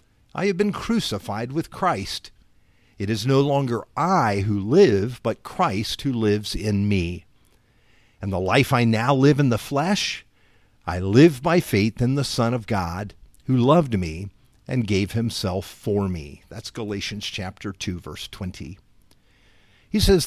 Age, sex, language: 50-69, male, English